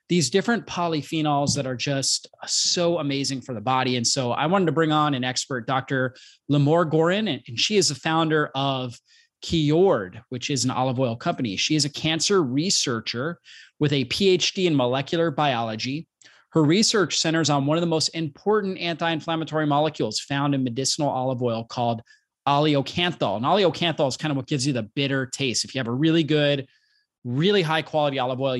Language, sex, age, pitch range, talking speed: English, male, 30-49, 130-165 Hz, 185 wpm